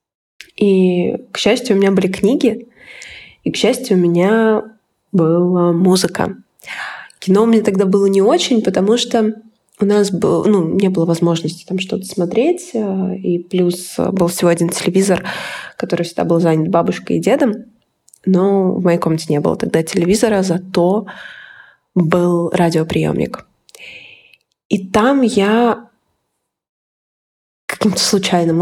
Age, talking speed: 20-39, 125 wpm